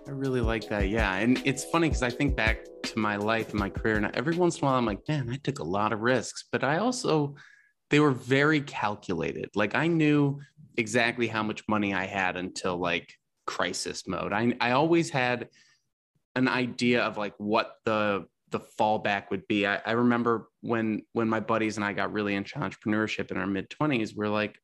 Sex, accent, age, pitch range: male, American, 20-39, 105-130 Hz